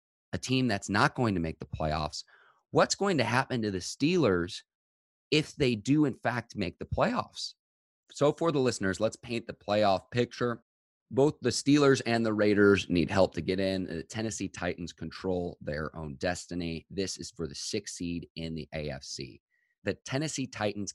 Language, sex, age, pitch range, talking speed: English, male, 30-49, 85-115 Hz, 180 wpm